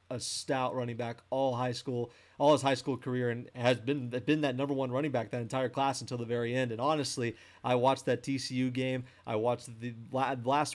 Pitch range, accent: 120-145 Hz, American